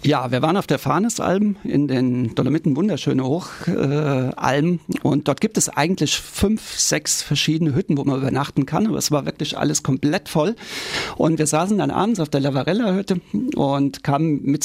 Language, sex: German, male